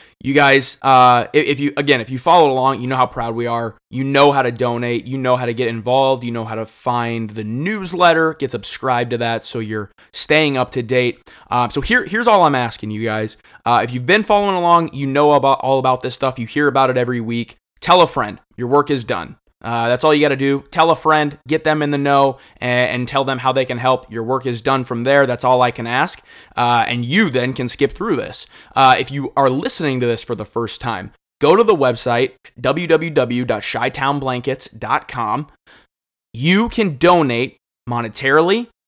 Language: English